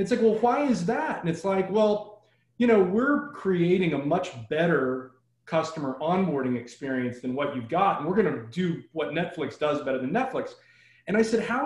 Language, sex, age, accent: English, male, 30-49, American